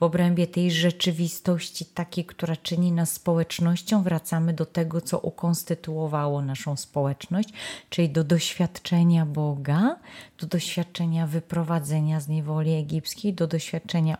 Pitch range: 150-175 Hz